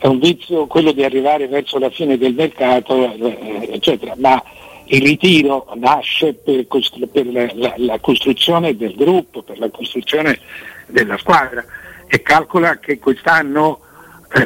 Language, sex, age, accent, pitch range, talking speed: Italian, male, 60-79, native, 120-155 Hz, 140 wpm